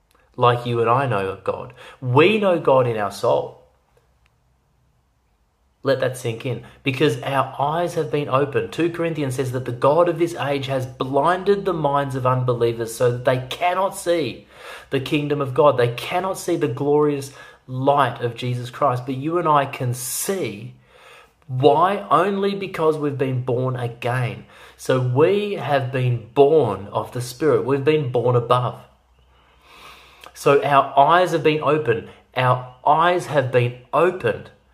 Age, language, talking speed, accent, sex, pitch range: 30-49, English, 160 wpm, Australian, male, 120-150 Hz